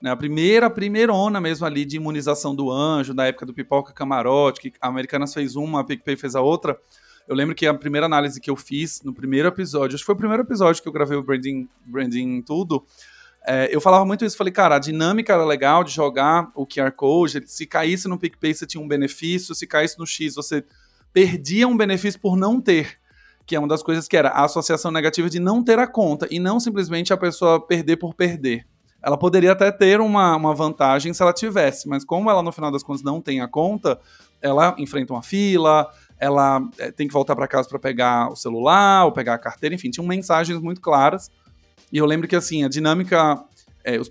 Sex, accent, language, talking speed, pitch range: male, Brazilian, Portuguese, 220 wpm, 140-180 Hz